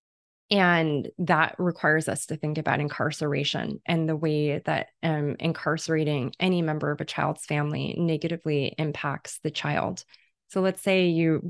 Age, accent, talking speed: 20-39, American, 145 wpm